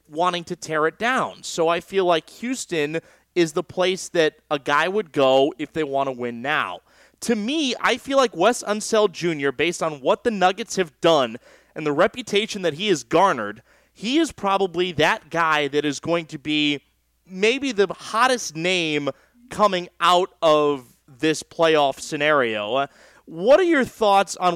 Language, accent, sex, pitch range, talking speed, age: English, American, male, 150-200 Hz, 175 wpm, 30-49